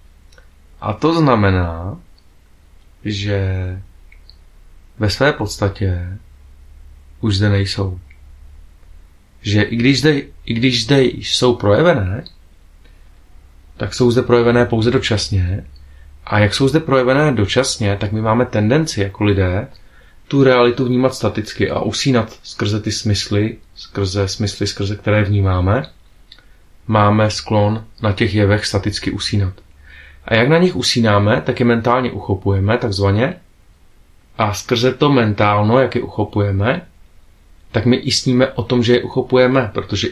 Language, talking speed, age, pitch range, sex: Czech, 125 wpm, 30-49, 90-120 Hz, male